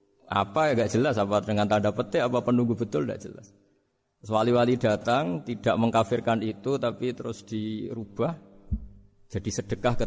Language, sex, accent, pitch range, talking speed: Indonesian, male, native, 100-120 Hz, 135 wpm